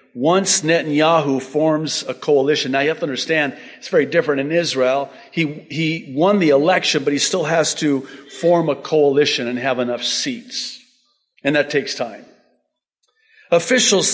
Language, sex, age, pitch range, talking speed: English, male, 50-69, 140-180 Hz, 155 wpm